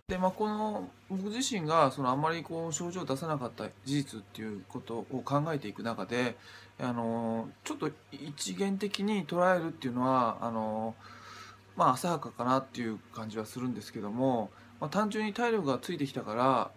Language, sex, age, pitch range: Japanese, male, 20-39, 115-155 Hz